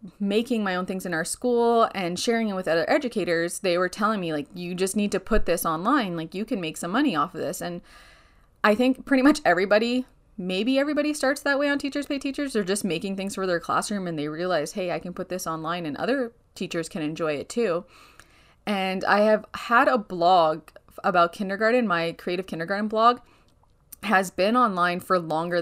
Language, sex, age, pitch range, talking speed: English, female, 20-39, 170-210 Hz, 210 wpm